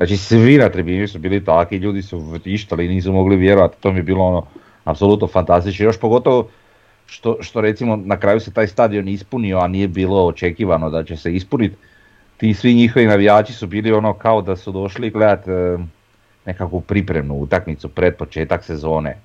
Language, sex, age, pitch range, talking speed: Croatian, male, 40-59, 80-105 Hz, 180 wpm